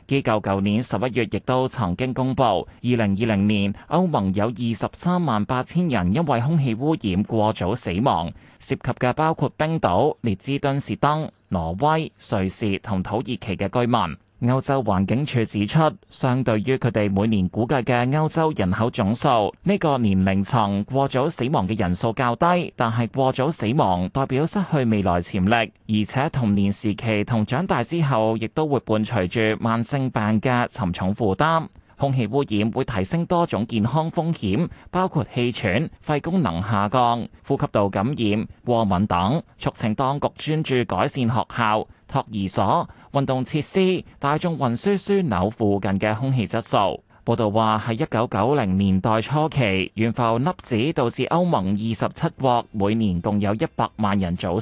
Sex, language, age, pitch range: male, Chinese, 20-39, 105-140 Hz